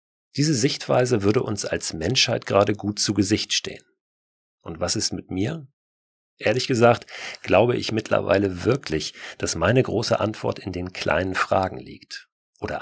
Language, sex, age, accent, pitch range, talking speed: German, male, 40-59, German, 85-115 Hz, 150 wpm